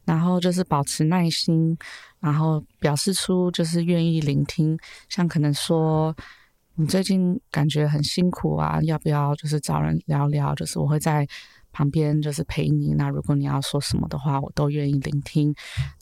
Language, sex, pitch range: Chinese, female, 145-170 Hz